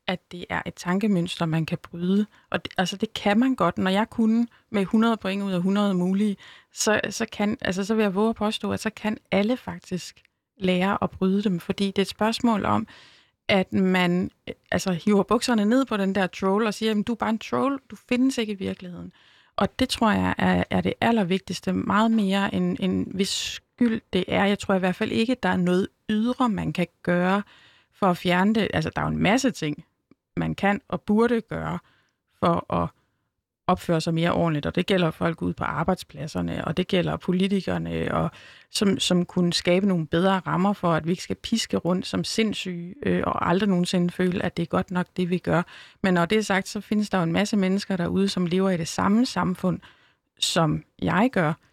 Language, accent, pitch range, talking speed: Danish, native, 175-210 Hz, 220 wpm